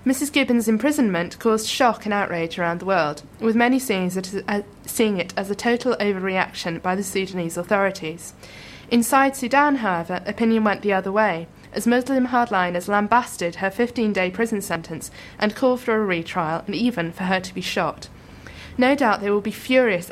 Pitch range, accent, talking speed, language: 185-235 Hz, British, 180 wpm, English